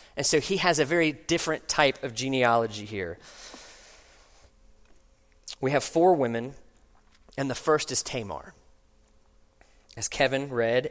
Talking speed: 125 wpm